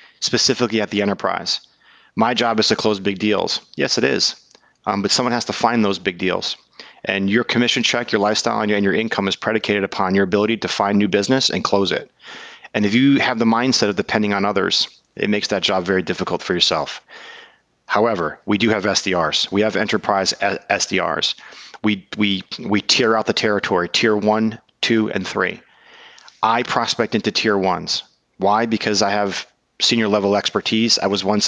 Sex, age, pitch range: male, 30-49, 100-120 Hz